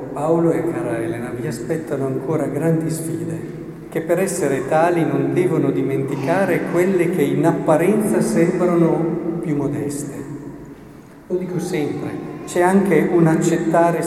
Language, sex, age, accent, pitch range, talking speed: Italian, male, 50-69, native, 145-170 Hz, 130 wpm